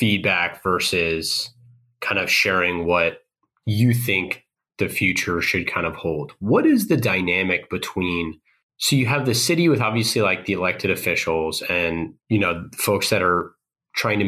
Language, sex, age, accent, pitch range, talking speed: English, male, 30-49, American, 90-120 Hz, 160 wpm